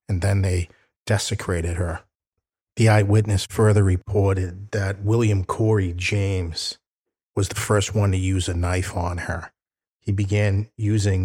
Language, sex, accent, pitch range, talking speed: English, male, American, 95-105 Hz, 140 wpm